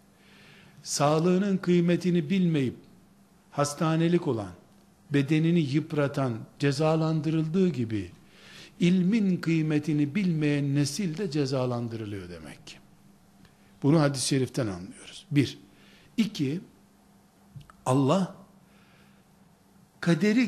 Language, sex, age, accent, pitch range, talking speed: Turkish, male, 60-79, native, 150-200 Hz, 75 wpm